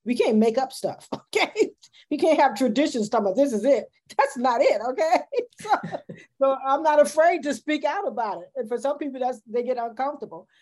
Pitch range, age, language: 200-250 Hz, 40-59, English